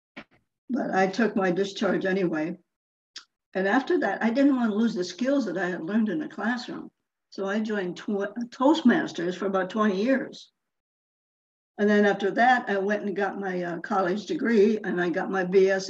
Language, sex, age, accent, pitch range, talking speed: English, female, 60-79, American, 185-225 Hz, 180 wpm